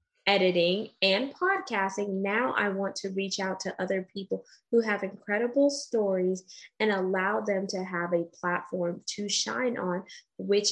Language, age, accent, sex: English, 20-39, American, female